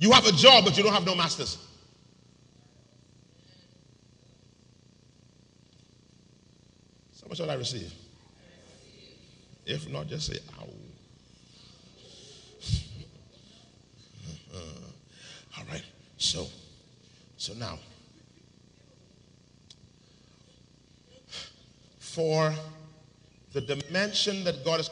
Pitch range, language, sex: 110-155 Hz, English, male